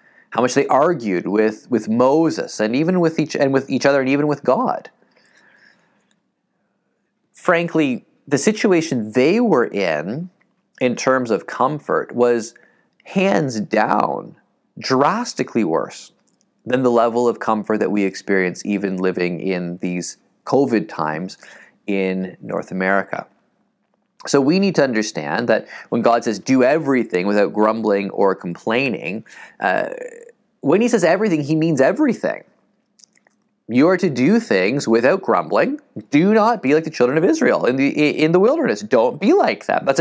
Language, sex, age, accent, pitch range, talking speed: English, male, 30-49, American, 105-175 Hz, 145 wpm